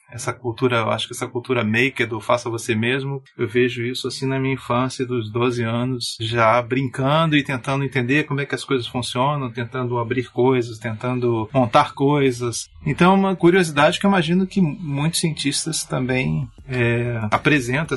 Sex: male